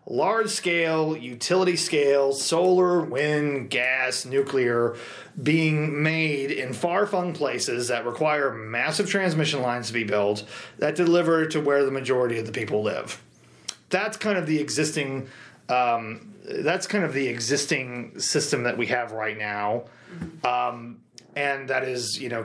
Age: 30-49